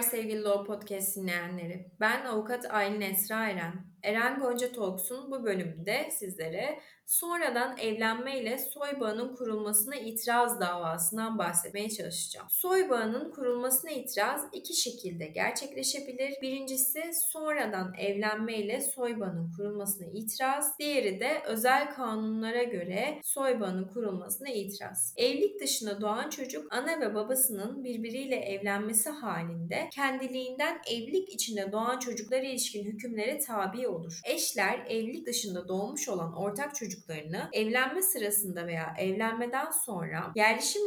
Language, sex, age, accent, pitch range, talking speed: Turkish, female, 30-49, native, 200-265 Hz, 115 wpm